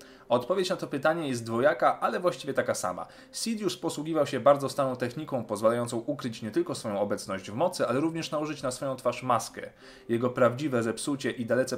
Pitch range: 115-150 Hz